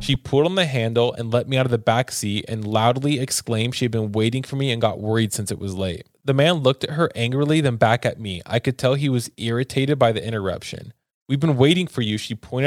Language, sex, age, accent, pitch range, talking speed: English, male, 20-39, American, 105-125 Hz, 260 wpm